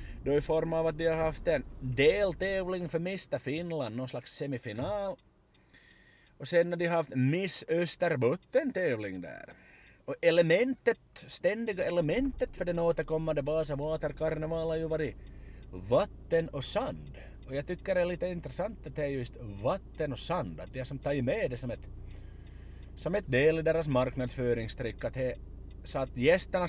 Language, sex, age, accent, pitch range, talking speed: Swedish, male, 30-49, Finnish, 105-170 Hz, 140 wpm